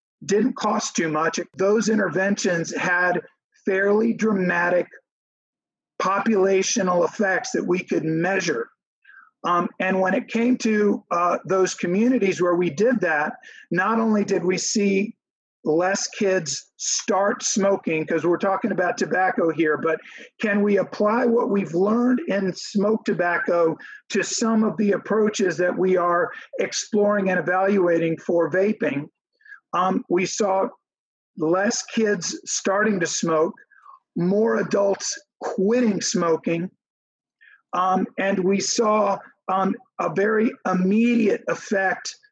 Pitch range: 180-225 Hz